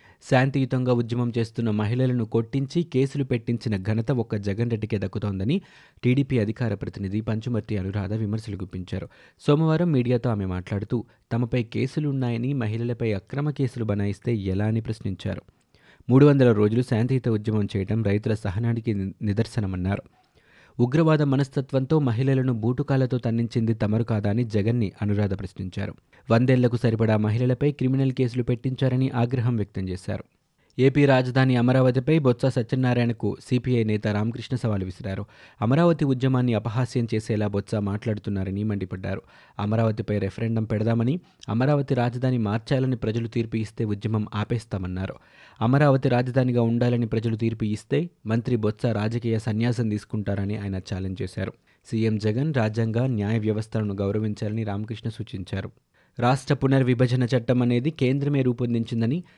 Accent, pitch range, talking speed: native, 105-130 Hz, 115 wpm